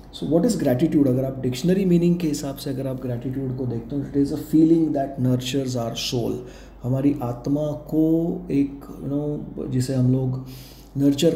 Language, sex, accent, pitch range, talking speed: Hindi, male, native, 130-155 Hz, 180 wpm